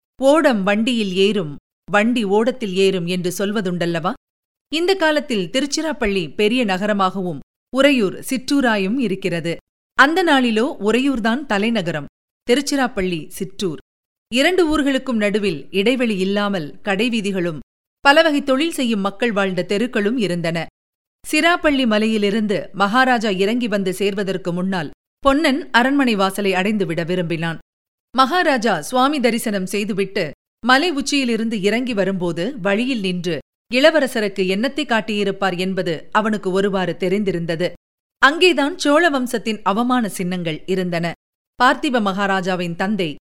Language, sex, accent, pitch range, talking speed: Tamil, female, native, 190-255 Hz, 100 wpm